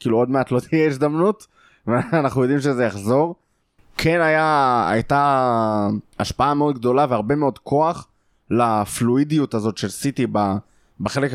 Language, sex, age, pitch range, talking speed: Hebrew, male, 20-39, 115-150 Hz, 125 wpm